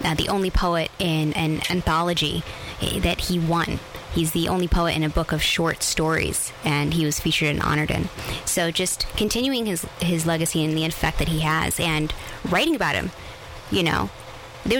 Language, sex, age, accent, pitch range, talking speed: English, female, 20-39, American, 160-195 Hz, 185 wpm